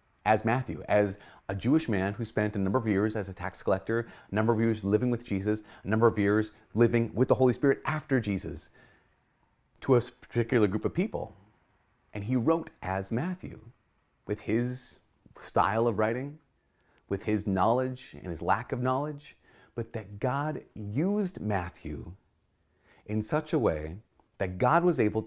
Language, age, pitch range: English, 30-49, 100-130 Hz